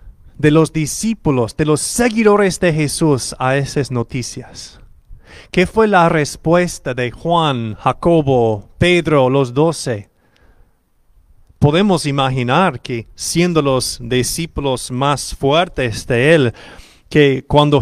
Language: English